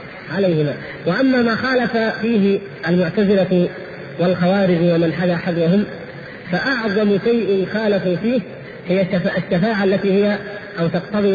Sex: male